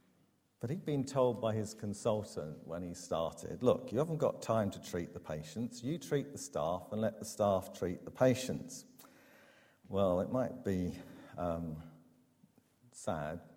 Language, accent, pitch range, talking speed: English, British, 90-135 Hz, 160 wpm